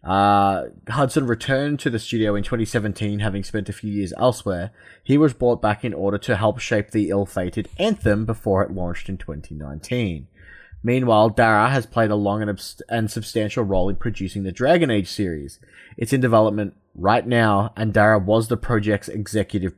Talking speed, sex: 175 wpm, male